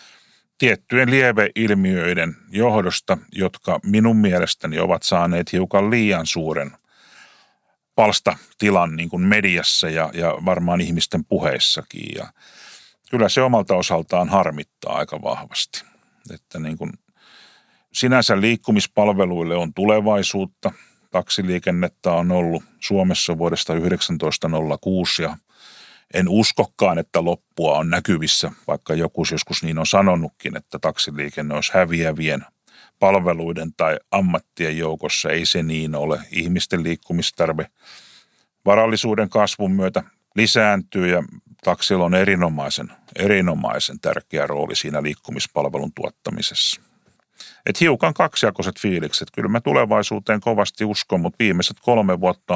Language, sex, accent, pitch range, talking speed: Finnish, male, native, 85-105 Hz, 105 wpm